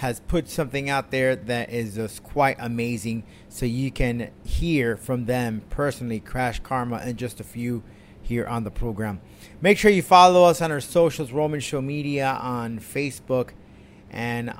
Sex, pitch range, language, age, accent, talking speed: male, 115-155 Hz, English, 30-49, American, 170 wpm